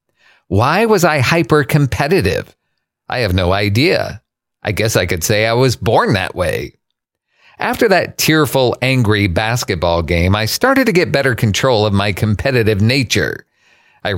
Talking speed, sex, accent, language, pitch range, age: 150 wpm, male, American, English, 105-140 Hz, 50-69